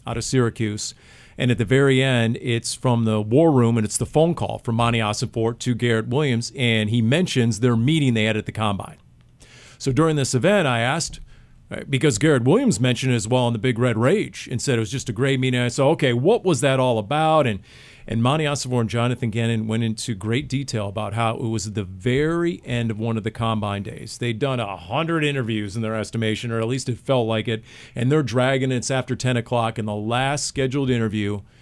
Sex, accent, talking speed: male, American, 230 wpm